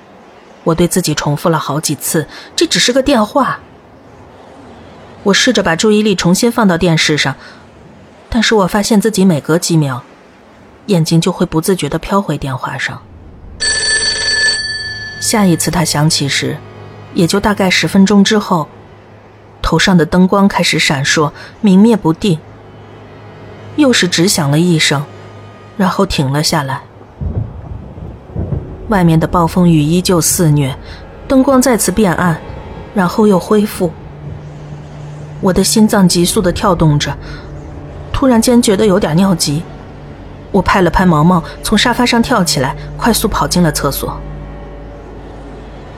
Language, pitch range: Chinese, 140-210 Hz